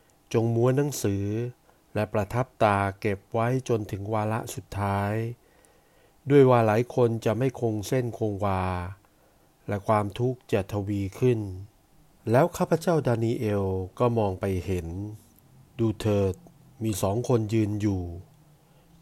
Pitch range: 100-125 Hz